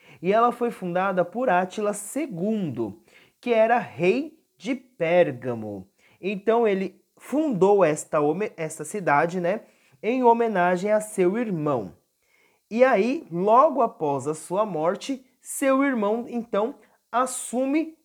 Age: 30-49